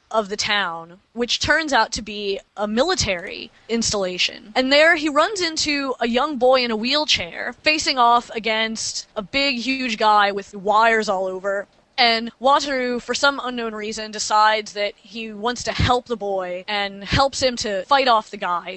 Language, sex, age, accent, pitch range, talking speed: English, female, 20-39, American, 205-245 Hz, 175 wpm